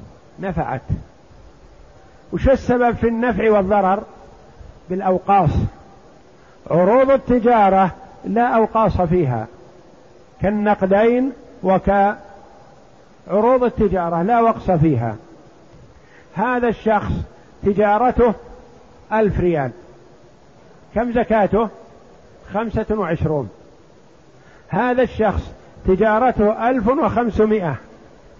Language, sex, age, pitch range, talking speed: Arabic, male, 50-69, 175-225 Hz, 70 wpm